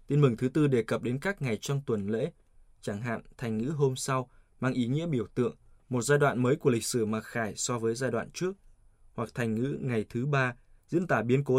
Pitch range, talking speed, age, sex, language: 110-135 Hz, 245 wpm, 20-39, male, Vietnamese